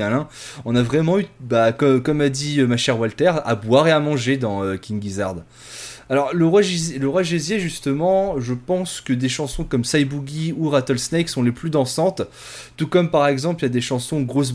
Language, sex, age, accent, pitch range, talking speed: French, male, 20-39, French, 125-165 Hz, 195 wpm